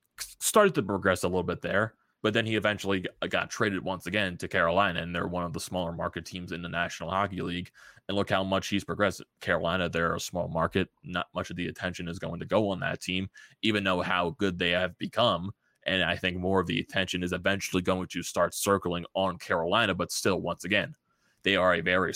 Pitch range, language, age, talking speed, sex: 85-100 Hz, English, 20-39, 225 wpm, male